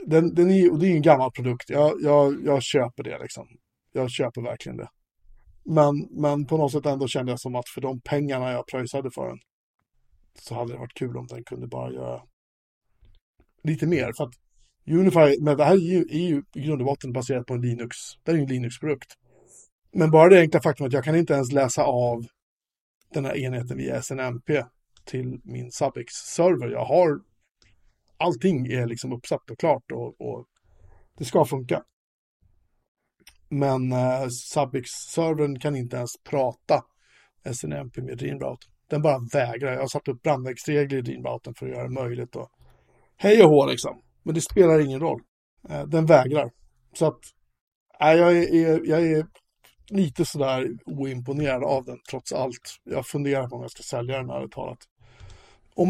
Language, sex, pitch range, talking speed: Swedish, male, 125-155 Hz, 180 wpm